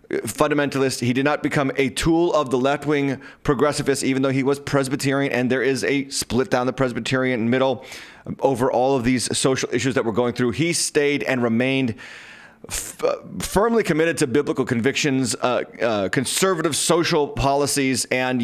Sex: male